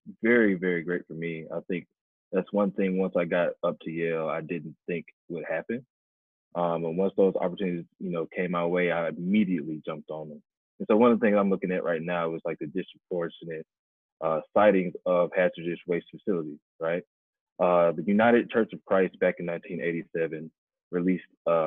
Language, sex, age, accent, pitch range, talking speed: English, male, 20-39, American, 80-95 Hz, 190 wpm